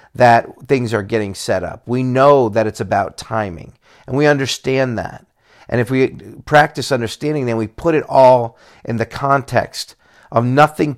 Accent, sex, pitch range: American, male, 110-130 Hz